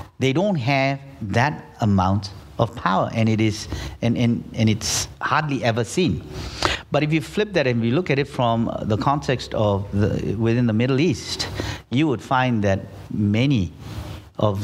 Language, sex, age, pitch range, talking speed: English, male, 50-69, 100-135 Hz, 170 wpm